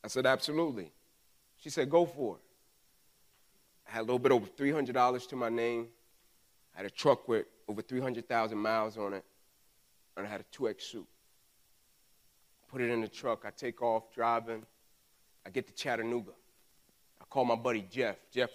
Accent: American